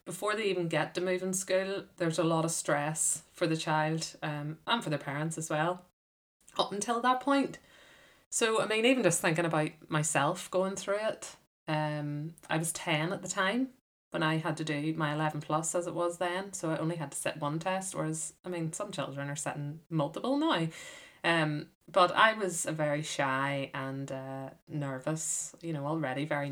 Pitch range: 150-180 Hz